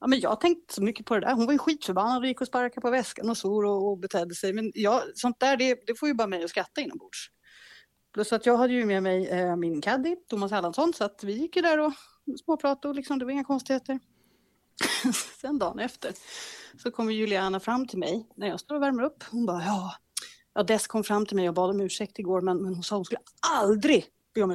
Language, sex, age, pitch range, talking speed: Swedish, female, 30-49, 200-285 Hz, 250 wpm